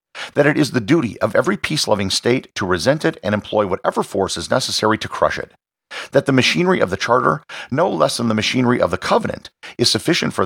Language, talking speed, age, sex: English, 220 wpm, 50-69, male